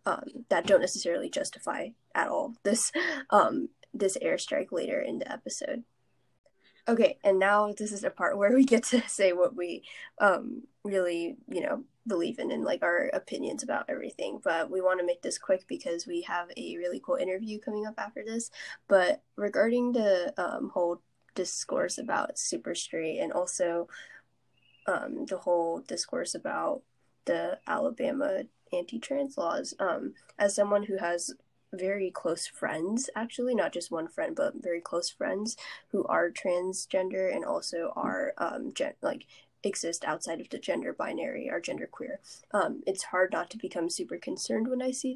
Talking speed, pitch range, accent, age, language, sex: 165 wpm, 185-275 Hz, American, 10-29, English, female